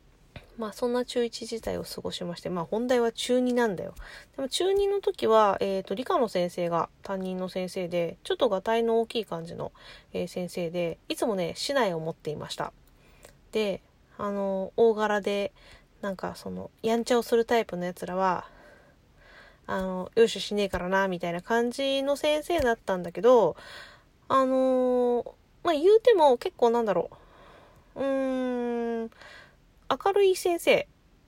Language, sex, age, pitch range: Japanese, female, 20-39, 190-265 Hz